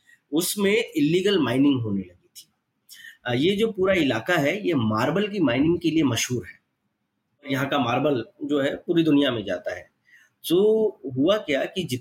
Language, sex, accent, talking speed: Telugu, male, native, 105 wpm